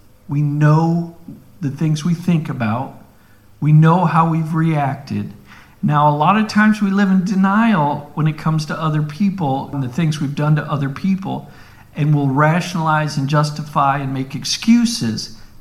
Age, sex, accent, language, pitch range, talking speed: 50-69, male, American, English, 135-170 Hz, 165 wpm